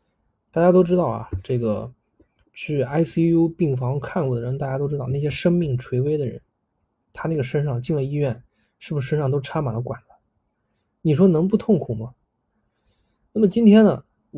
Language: Chinese